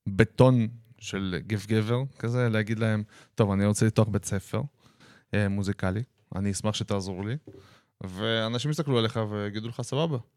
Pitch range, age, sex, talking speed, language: 100-125 Hz, 20-39, male, 135 wpm, Hebrew